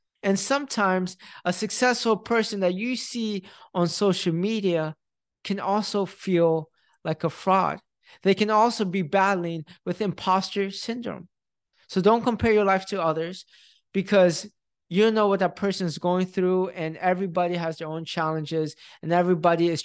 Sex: male